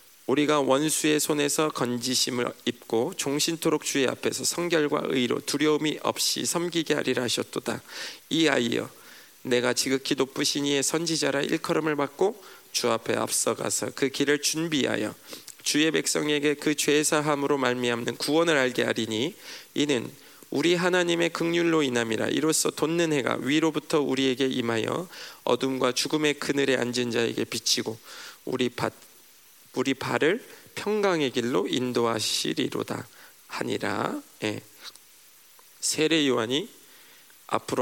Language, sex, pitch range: Korean, male, 125-155 Hz